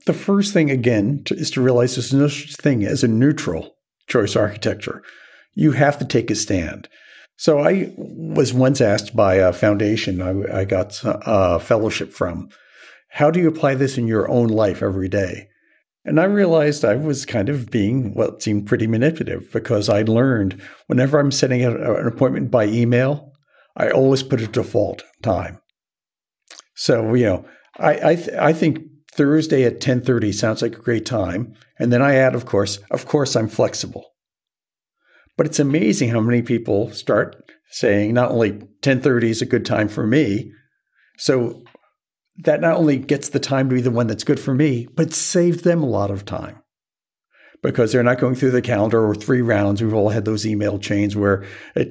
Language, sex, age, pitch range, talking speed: English, male, 50-69, 105-145 Hz, 185 wpm